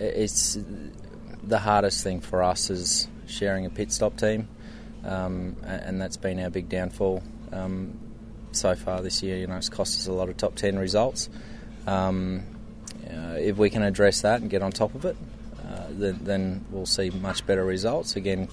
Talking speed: 190 wpm